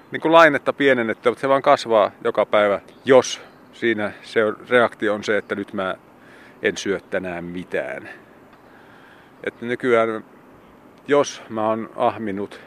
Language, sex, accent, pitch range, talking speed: Finnish, male, native, 100-125 Hz, 135 wpm